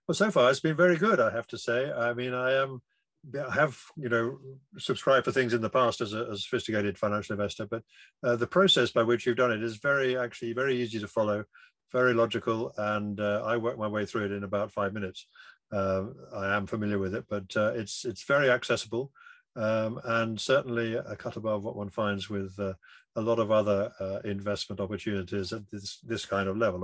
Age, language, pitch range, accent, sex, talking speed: 50-69, English, 105-125 Hz, British, male, 210 wpm